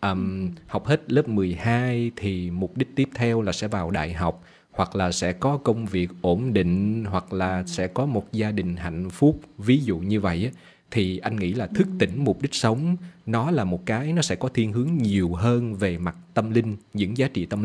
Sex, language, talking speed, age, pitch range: male, Vietnamese, 220 wpm, 20-39, 95-125 Hz